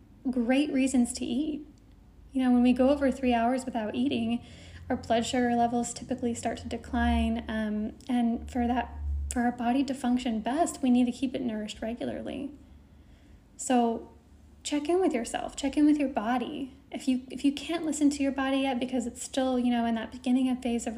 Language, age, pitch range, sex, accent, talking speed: English, 10-29, 235-275 Hz, female, American, 200 wpm